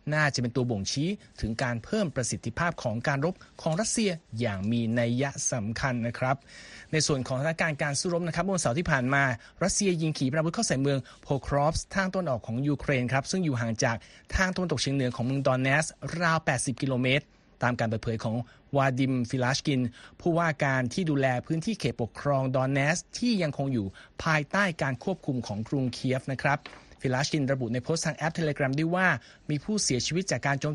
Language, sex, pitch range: Thai, male, 125-160 Hz